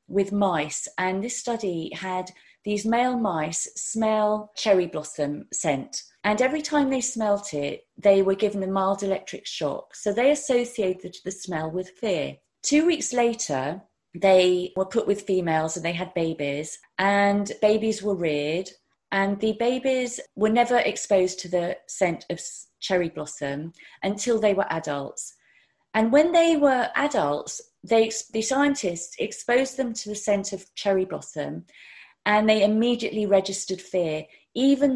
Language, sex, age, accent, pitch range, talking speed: English, female, 30-49, British, 180-225 Hz, 155 wpm